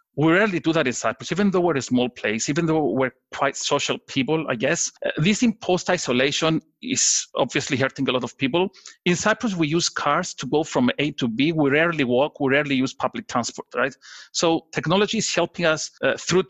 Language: English